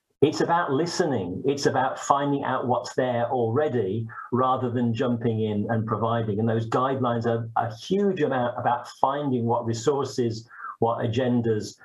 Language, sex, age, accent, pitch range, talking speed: English, male, 50-69, British, 115-130 Hz, 145 wpm